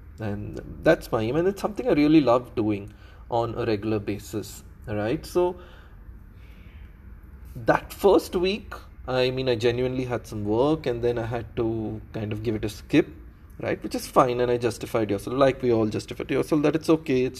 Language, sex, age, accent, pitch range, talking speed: English, male, 20-39, Indian, 105-140 Hz, 195 wpm